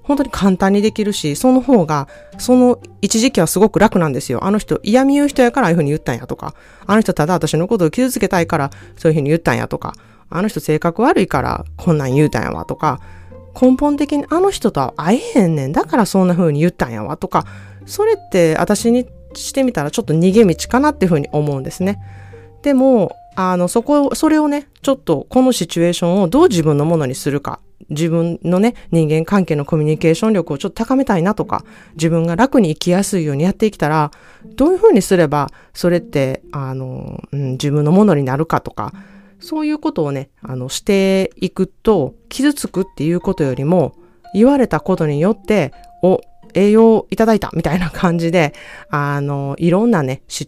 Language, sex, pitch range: Japanese, female, 150-215 Hz